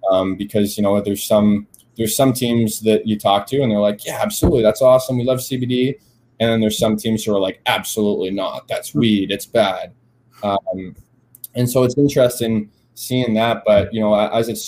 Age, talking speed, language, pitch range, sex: 20-39, 200 wpm, English, 105-120 Hz, male